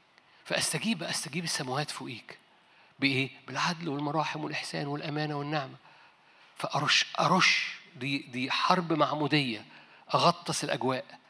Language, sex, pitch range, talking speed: Arabic, male, 135-195 Hz, 100 wpm